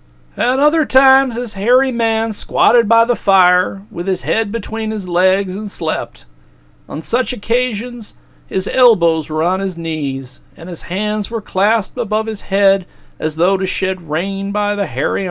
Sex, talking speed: male, 170 wpm